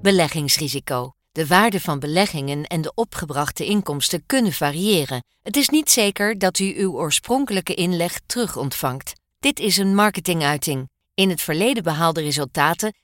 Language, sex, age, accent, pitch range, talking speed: Dutch, female, 40-59, Dutch, 160-210 Hz, 145 wpm